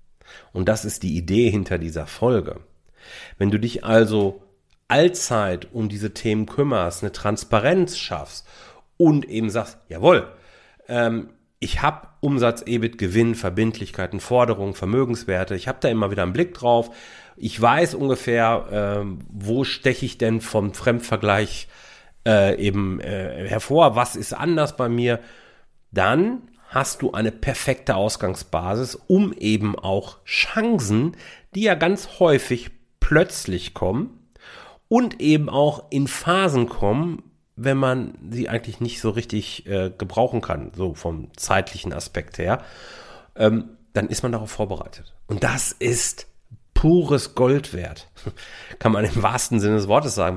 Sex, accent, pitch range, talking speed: male, German, 100-130 Hz, 140 wpm